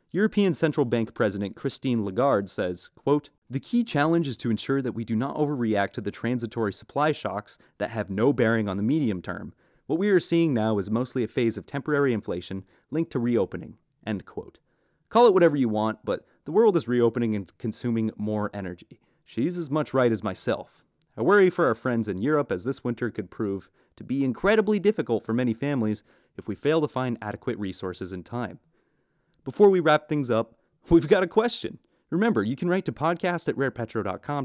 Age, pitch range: 30-49, 110-160 Hz